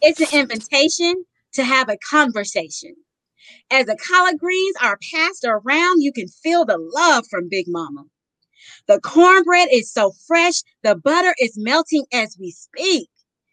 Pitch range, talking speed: 225-340 Hz, 150 wpm